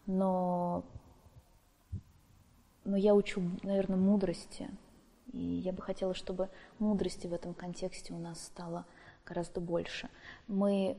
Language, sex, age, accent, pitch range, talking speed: Russian, female, 20-39, native, 175-200 Hz, 115 wpm